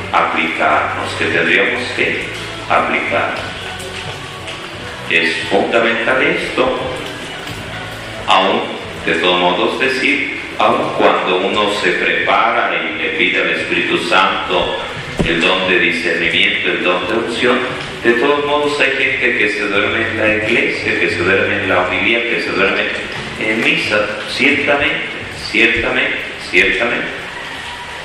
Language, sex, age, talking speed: Spanish, male, 40-59, 120 wpm